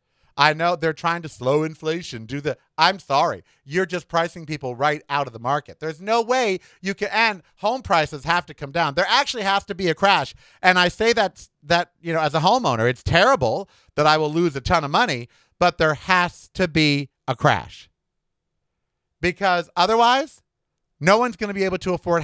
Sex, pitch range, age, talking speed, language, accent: male, 155-215 Hz, 50-69, 205 wpm, English, American